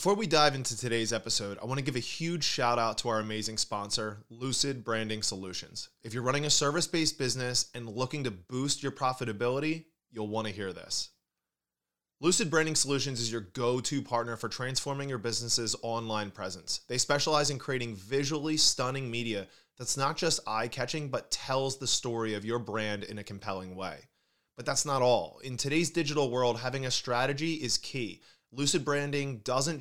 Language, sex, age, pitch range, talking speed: English, male, 20-39, 110-140 Hz, 180 wpm